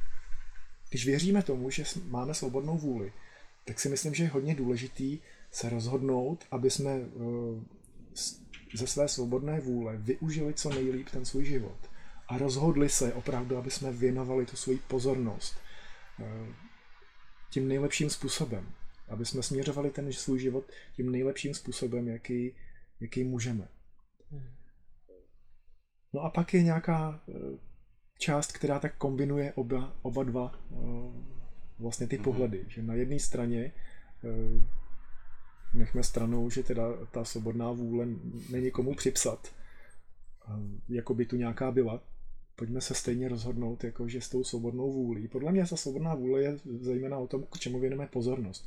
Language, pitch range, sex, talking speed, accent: Czech, 115-135 Hz, male, 135 wpm, native